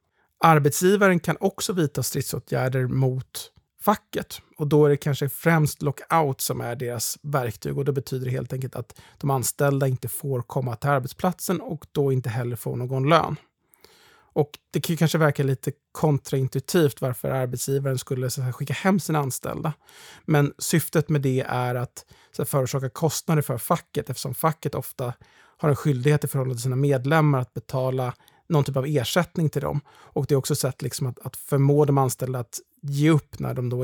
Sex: male